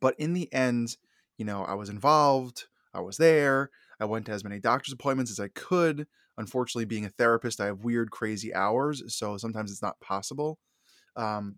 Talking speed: 190 wpm